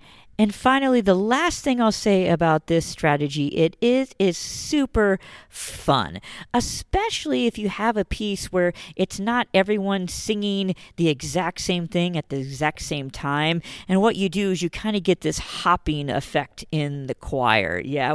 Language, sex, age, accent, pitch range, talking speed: English, female, 40-59, American, 150-200 Hz, 170 wpm